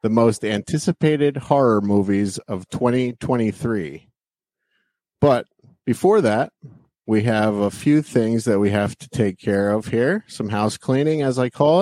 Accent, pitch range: American, 105-125 Hz